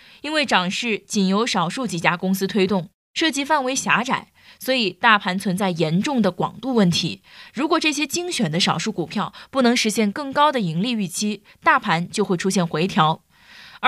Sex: female